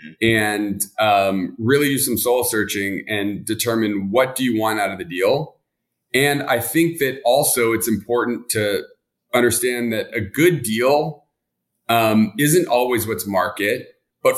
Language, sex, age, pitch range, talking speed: English, male, 40-59, 105-140 Hz, 150 wpm